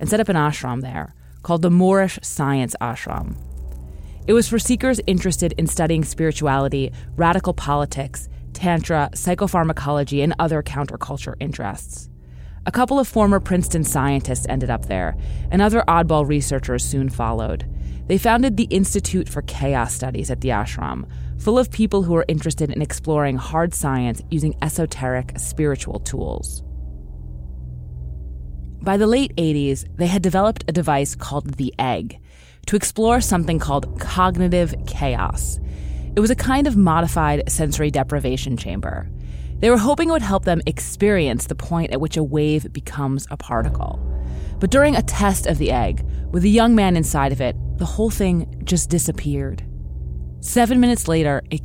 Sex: female